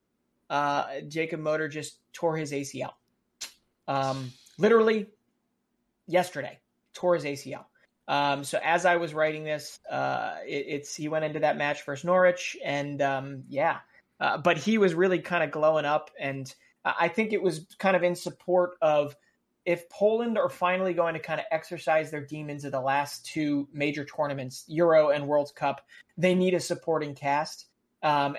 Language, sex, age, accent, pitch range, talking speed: English, male, 30-49, American, 140-175 Hz, 165 wpm